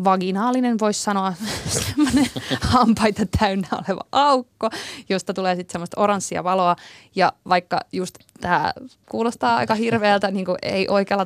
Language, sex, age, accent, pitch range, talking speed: Finnish, female, 20-39, native, 175-215 Hz, 130 wpm